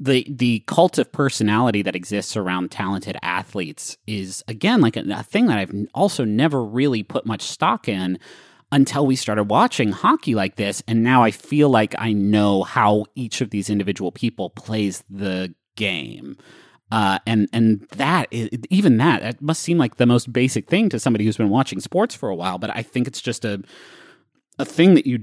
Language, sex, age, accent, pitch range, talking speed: English, male, 30-49, American, 105-135 Hz, 195 wpm